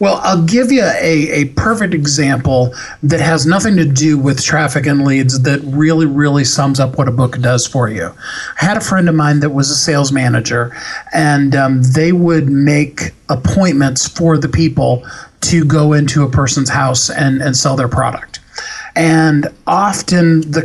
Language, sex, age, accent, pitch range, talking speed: English, male, 40-59, American, 135-165 Hz, 180 wpm